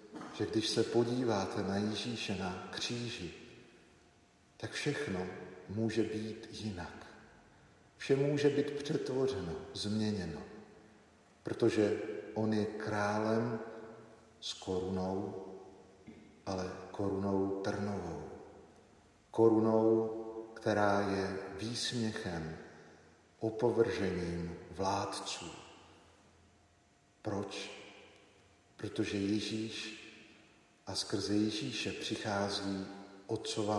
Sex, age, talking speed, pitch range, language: male, 50-69, 70 wpm, 100-115 Hz, Slovak